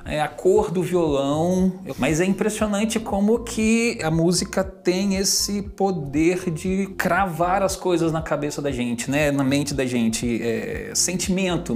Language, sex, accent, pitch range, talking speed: Portuguese, male, Brazilian, 140-205 Hz, 155 wpm